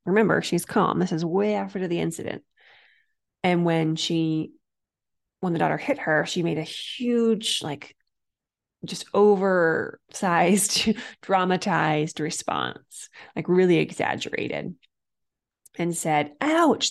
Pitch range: 160-195 Hz